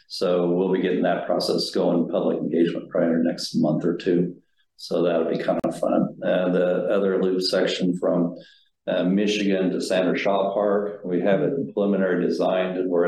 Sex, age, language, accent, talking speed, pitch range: male, 50-69, English, American, 185 wpm, 85-110 Hz